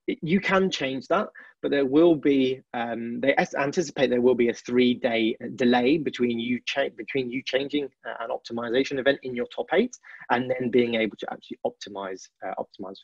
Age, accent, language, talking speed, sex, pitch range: 20-39, British, English, 190 wpm, male, 125-155 Hz